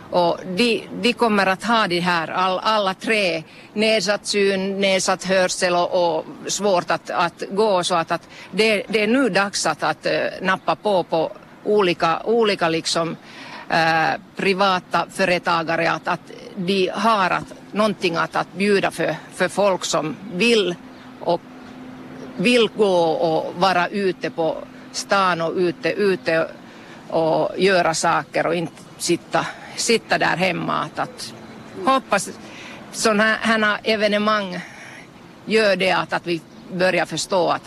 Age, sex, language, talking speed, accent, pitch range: 50-69, female, Swedish, 135 wpm, Finnish, 175-220 Hz